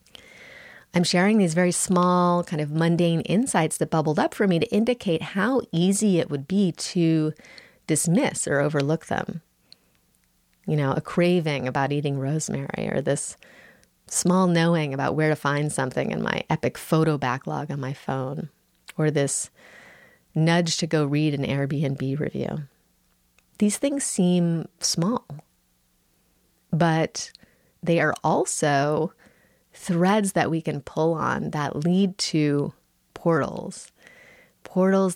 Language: English